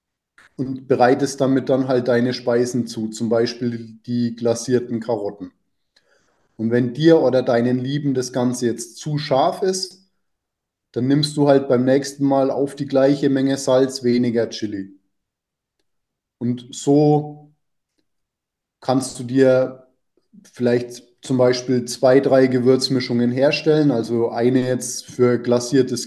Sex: male